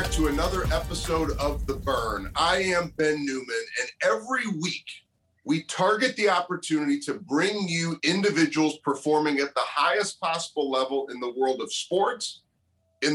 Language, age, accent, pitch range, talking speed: English, 40-59, American, 140-200 Hz, 150 wpm